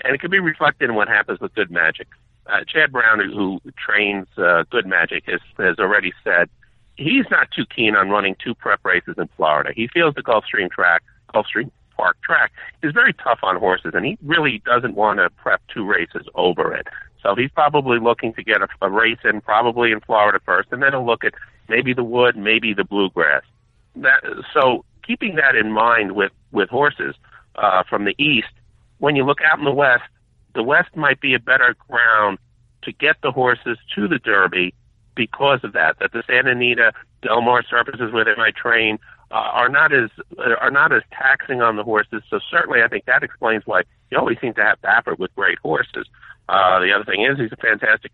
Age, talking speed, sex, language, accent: 50-69, 205 wpm, male, English, American